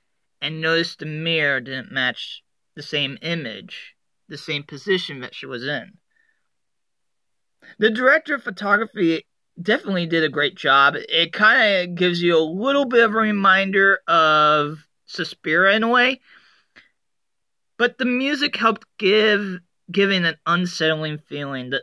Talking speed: 140 wpm